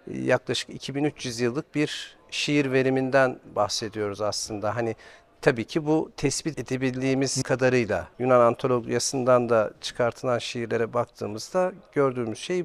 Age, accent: 50-69, native